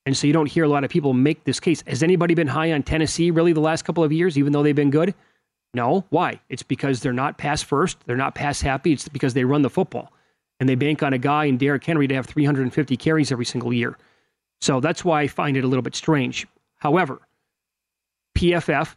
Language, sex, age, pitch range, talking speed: English, male, 30-49, 135-160 Hz, 235 wpm